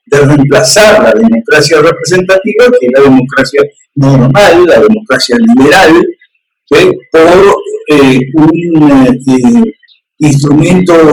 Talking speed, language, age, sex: 100 wpm, Spanish, 50-69, male